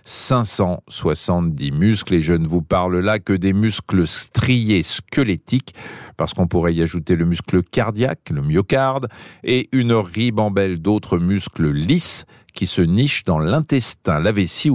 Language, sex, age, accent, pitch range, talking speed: French, male, 50-69, French, 90-125 Hz, 145 wpm